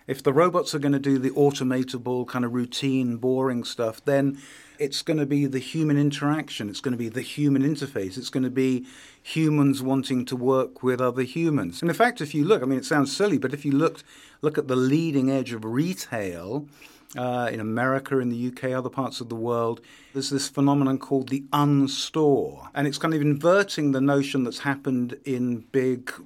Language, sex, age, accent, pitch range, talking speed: English, male, 50-69, British, 125-150 Hz, 210 wpm